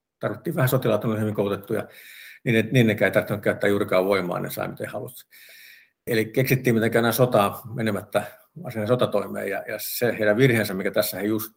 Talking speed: 175 wpm